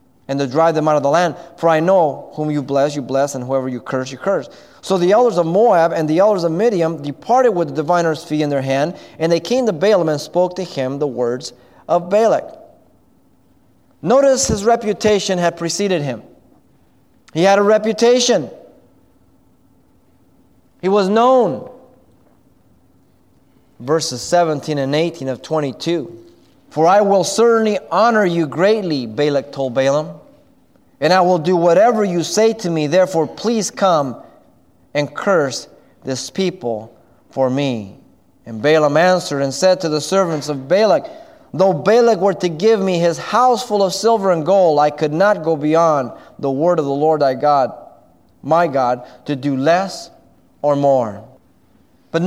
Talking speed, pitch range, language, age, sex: 165 wpm, 145-200 Hz, English, 30-49, male